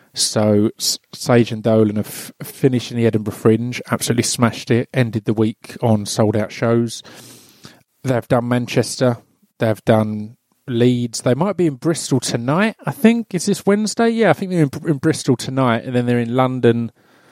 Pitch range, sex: 115-135 Hz, male